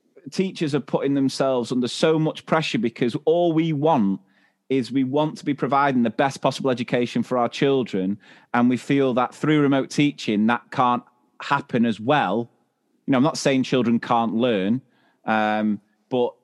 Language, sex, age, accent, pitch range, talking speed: English, male, 30-49, British, 120-155 Hz, 170 wpm